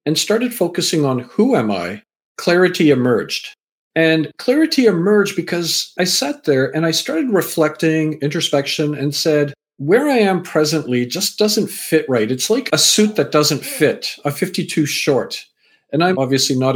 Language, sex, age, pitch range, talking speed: English, male, 50-69, 135-185 Hz, 160 wpm